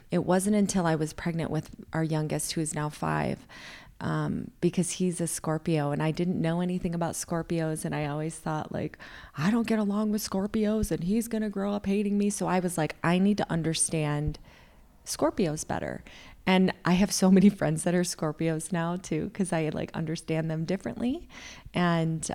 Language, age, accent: English, 20-39, American